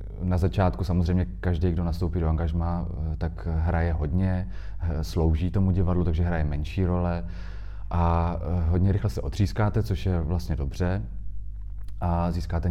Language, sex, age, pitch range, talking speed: Czech, male, 30-49, 85-95 Hz, 135 wpm